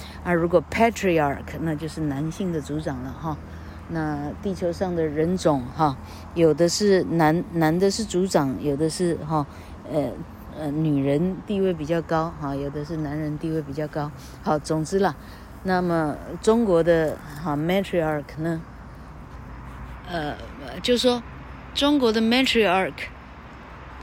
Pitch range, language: 150-190 Hz, Chinese